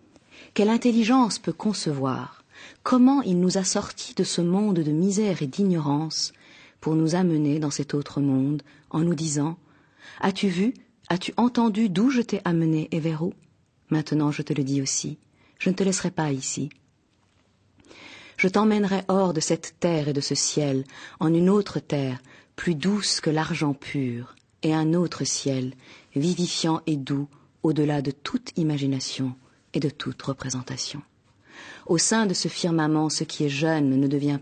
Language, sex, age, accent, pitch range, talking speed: French, female, 40-59, French, 140-180 Hz, 165 wpm